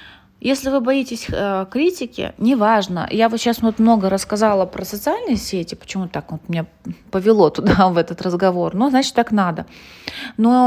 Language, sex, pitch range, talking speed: Russian, female, 195-245 Hz, 170 wpm